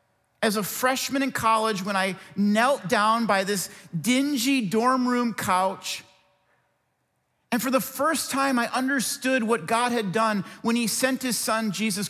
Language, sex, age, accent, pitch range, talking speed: English, male, 40-59, American, 200-250 Hz, 160 wpm